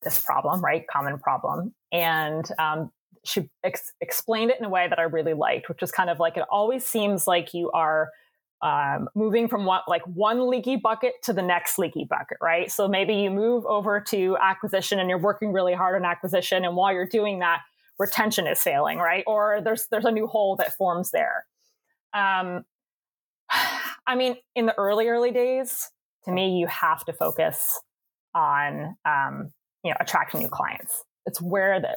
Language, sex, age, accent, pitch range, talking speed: English, female, 20-39, American, 180-220 Hz, 180 wpm